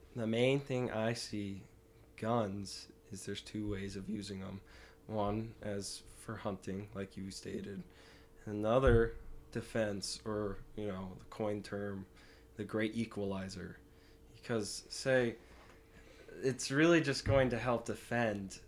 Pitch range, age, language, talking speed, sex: 95-110 Hz, 20-39, English, 130 wpm, male